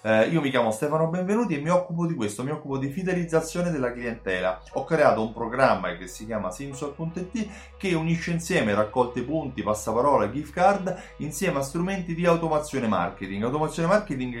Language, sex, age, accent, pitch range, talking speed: Italian, male, 30-49, native, 125-170 Hz, 165 wpm